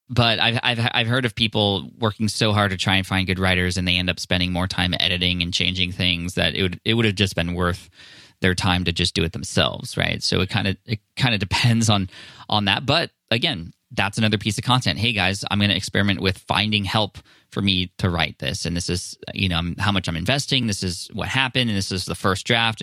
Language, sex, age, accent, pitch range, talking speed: English, male, 20-39, American, 90-110 Hz, 250 wpm